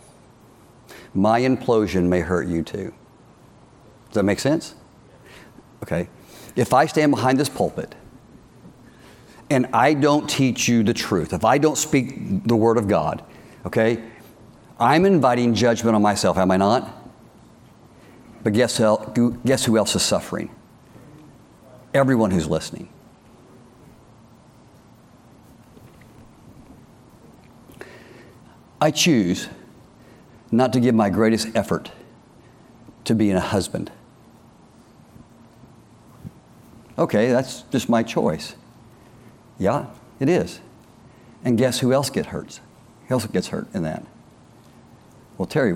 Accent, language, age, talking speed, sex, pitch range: American, English, 50-69, 110 wpm, male, 110-135 Hz